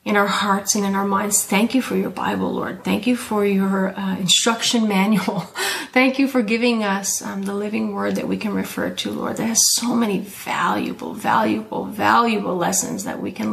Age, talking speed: 30-49, 205 wpm